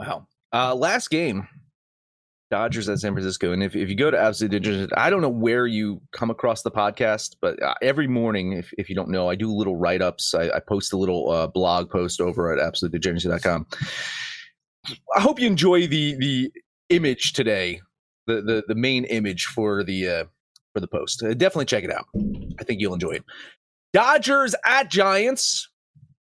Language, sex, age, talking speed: English, male, 30-49, 185 wpm